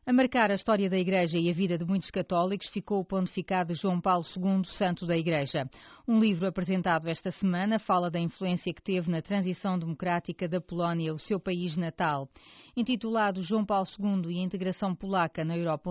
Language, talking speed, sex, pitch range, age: Portuguese, 190 wpm, female, 170-200 Hz, 30-49